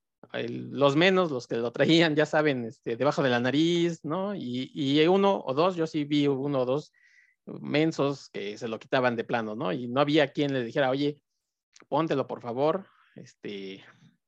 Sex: male